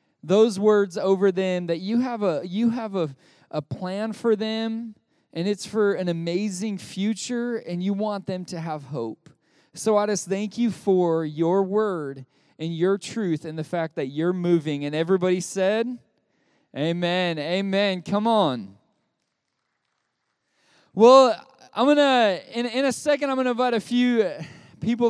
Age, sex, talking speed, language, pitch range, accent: 20-39, male, 160 wpm, English, 190-240 Hz, American